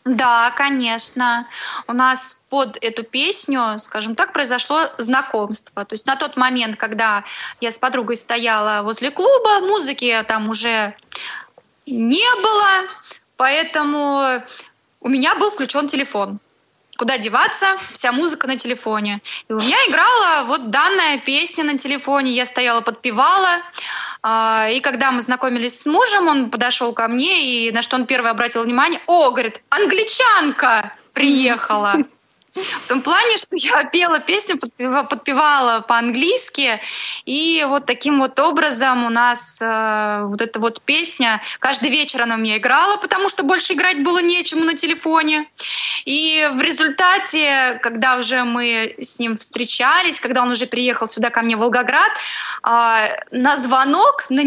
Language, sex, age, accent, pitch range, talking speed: Russian, female, 20-39, native, 235-310 Hz, 140 wpm